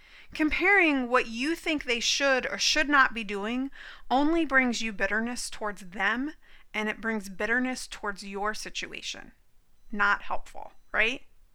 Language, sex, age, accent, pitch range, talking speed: English, female, 30-49, American, 215-290 Hz, 140 wpm